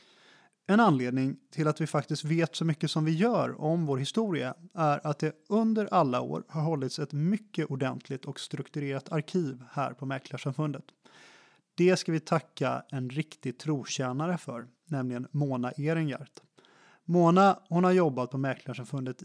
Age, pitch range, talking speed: 30-49, 135-175 Hz, 155 wpm